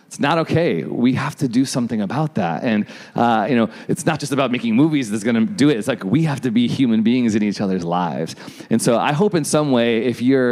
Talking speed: 260 wpm